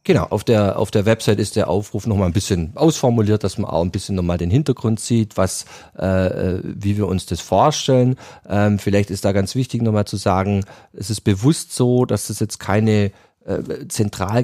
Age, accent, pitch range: 40-59, German, 100-120 Hz